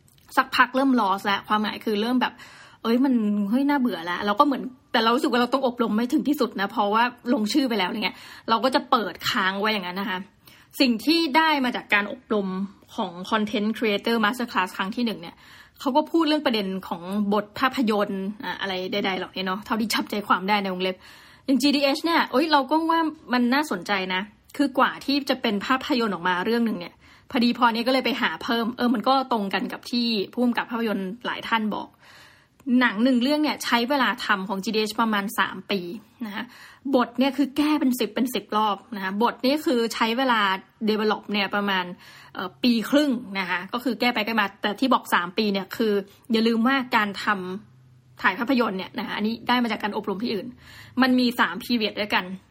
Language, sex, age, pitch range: Thai, female, 20-39, 205-255 Hz